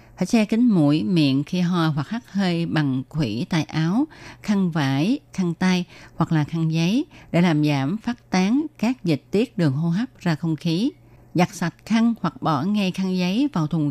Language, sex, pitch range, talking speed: Vietnamese, female, 150-195 Hz, 200 wpm